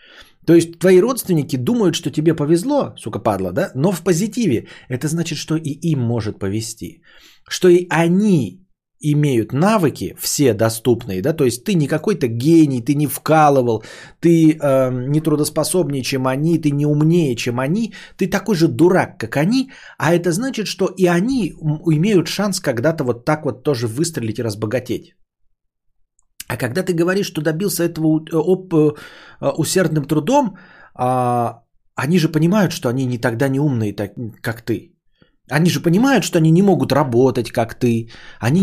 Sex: male